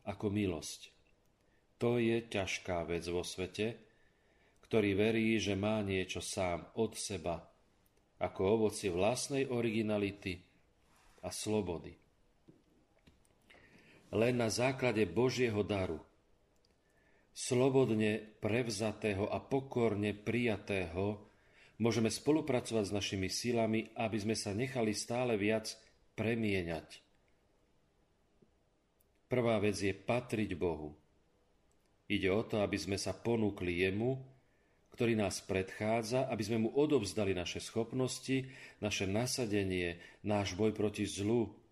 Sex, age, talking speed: male, 40-59, 105 wpm